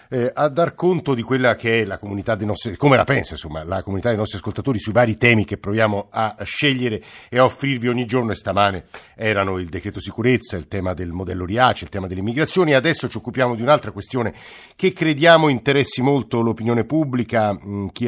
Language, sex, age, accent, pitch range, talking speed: Italian, male, 50-69, native, 100-125 Hz, 205 wpm